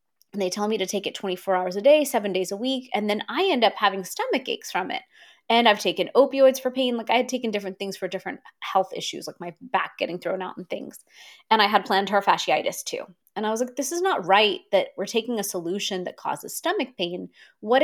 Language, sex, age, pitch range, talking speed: English, female, 20-39, 195-260 Hz, 245 wpm